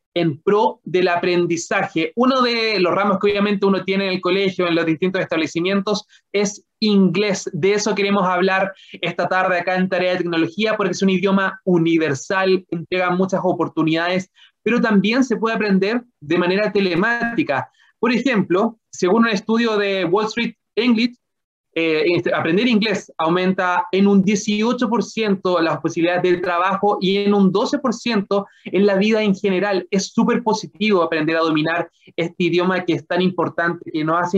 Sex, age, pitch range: male, 30-49, 175-205 Hz